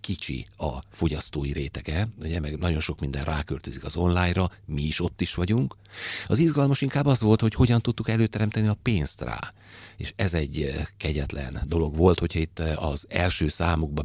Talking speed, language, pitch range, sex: 170 wpm, Hungarian, 75-90 Hz, male